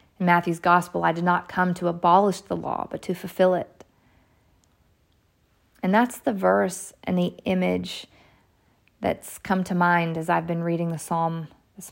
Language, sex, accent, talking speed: English, female, American, 165 wpm